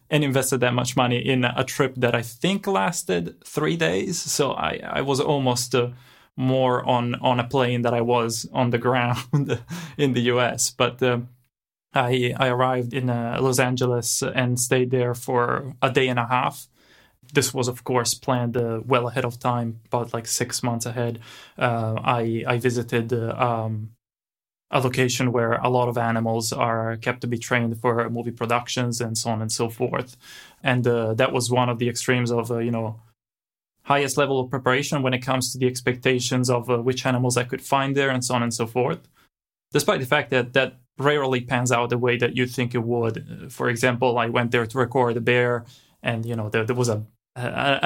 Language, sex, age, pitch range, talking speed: English, male, 20-39, 120-130 Hz, 205 wpm